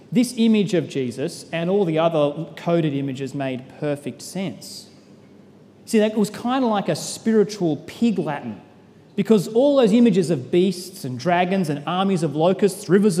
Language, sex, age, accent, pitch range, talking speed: English, male, 30-49, Australian, 165-220 Hz, 165 wpm